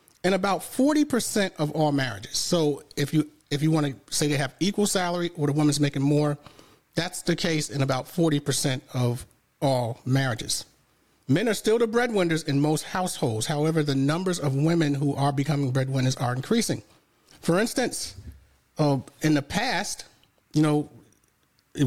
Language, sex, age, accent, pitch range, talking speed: English, male, 40-59, American, 135-175 Hz, 165 wpm